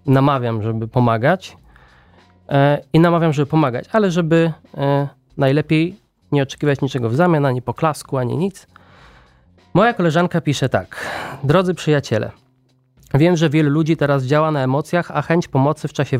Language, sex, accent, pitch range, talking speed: Polish, male, native, 130-160 Hz, 140 wpm